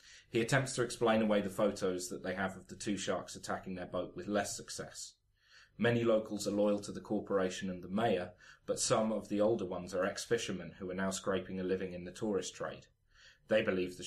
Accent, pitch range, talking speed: British, 95-110 Hz, 220 wpm